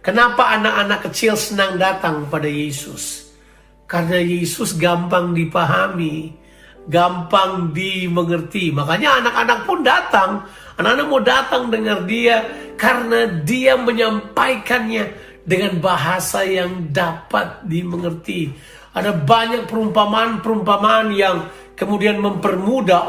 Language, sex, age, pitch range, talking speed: Indonesian, male, 50-69, 175-225 Hz, 95 wpm